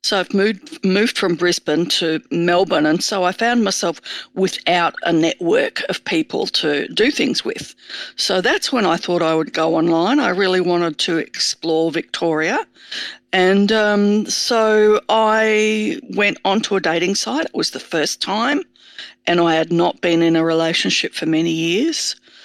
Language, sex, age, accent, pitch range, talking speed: English, female, 50-69, Australian, 175-225 Hz, 165 wpm